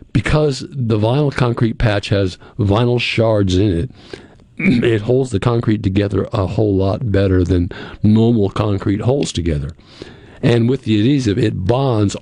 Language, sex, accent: English, male, American